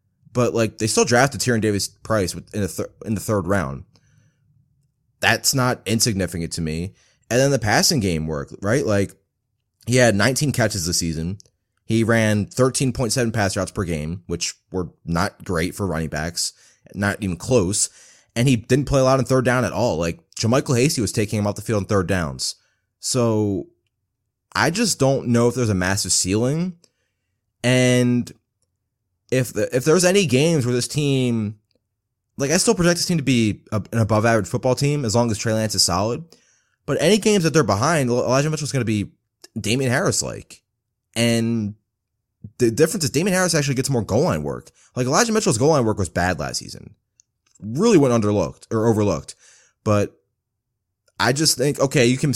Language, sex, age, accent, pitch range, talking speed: English, male, 20-39, American, 100-130 Hz, 185 wpm